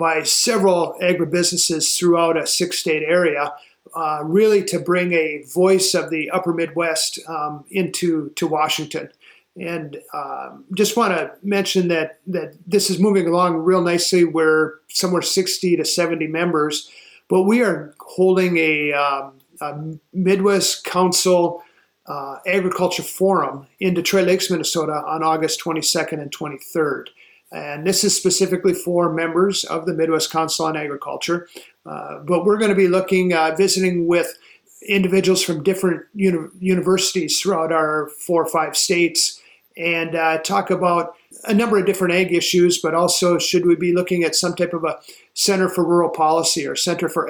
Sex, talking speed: male, 155 wpm